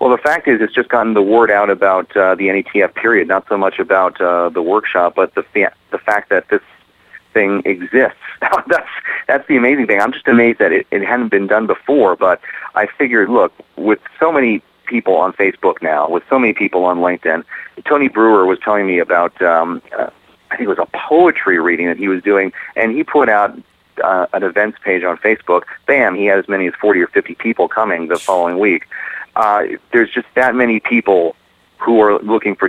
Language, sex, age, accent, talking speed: English, male, 40-59, American, 210 wpm